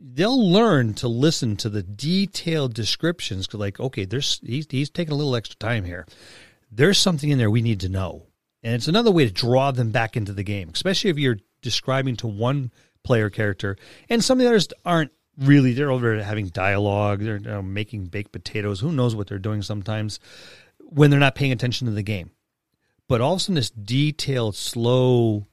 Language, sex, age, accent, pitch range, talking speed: English, male, 40-59, American, 105-135 Hz, 200 wpm